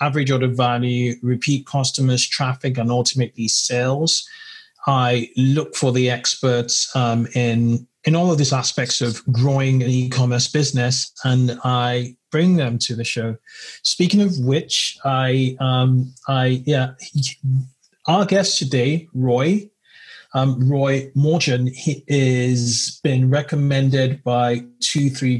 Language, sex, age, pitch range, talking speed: English, male, 30-49, 125-145 Hz, 130 wpm